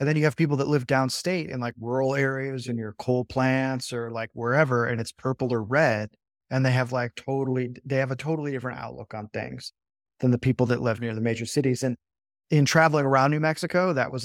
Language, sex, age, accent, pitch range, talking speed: English, male, 30-49, American, 115-140 Hz, 230 wpm